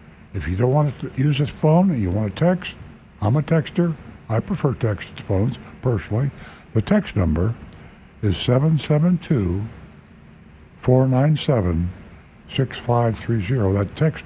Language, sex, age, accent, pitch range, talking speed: English, male, 60-79, American, 95-135 Hz, 120 wpm